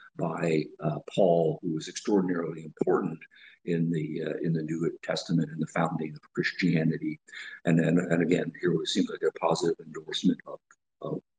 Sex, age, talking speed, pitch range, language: male, 50-69, 170 wpm, 85-100 Hz, English